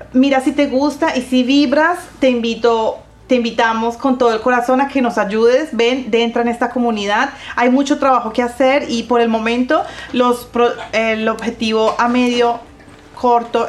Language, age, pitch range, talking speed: Spanish, 30-49, 210-250 Hz, 175 wpm